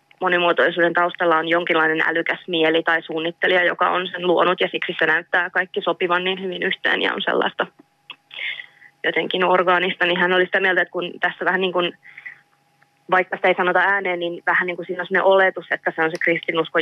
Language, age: Finnish, 20-39